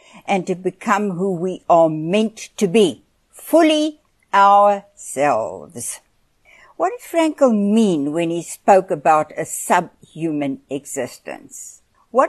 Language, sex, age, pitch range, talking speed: English, female, 60-79, 170-255 Hz, 110 wpm